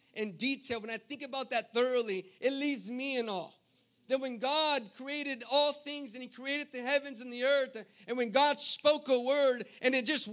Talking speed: 210 wpm